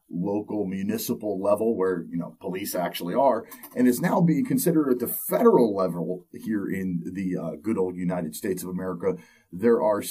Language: English